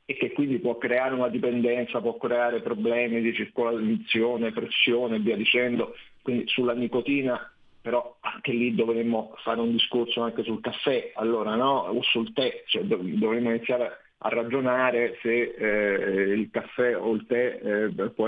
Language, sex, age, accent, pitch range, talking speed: Italian, male, 40-59, native, 115-150 Hz, 160 wpm